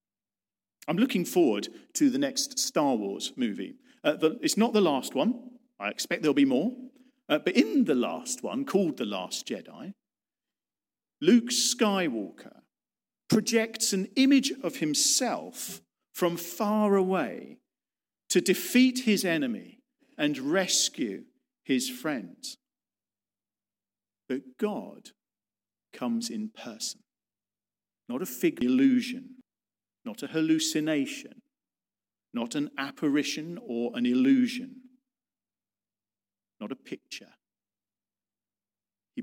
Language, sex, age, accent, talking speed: English, male, 50-69, British, 110 wpm